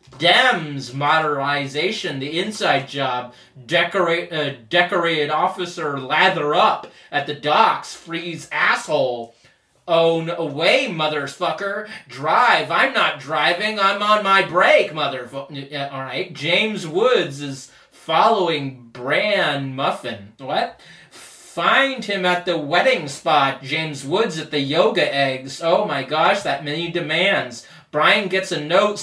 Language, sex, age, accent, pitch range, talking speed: English, male, 30-49, American, 145-185 Hz, 120 wpm